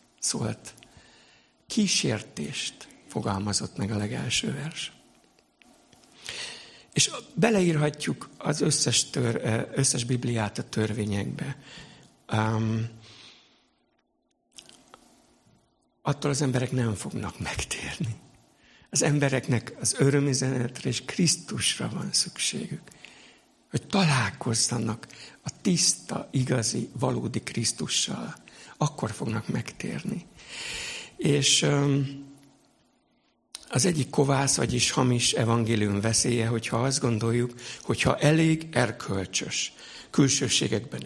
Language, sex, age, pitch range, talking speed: Hungarian, male, 60-79, 115-140 Hz, 80 wpm